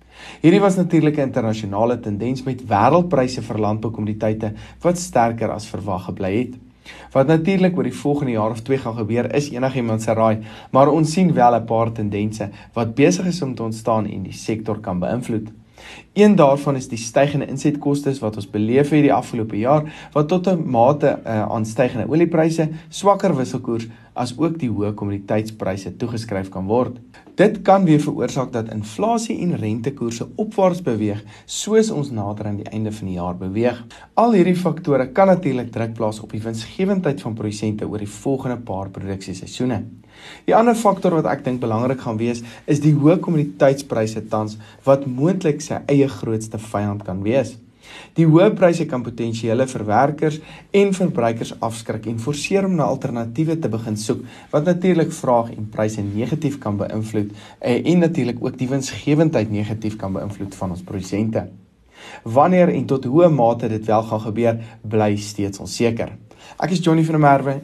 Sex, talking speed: male, 165 wpm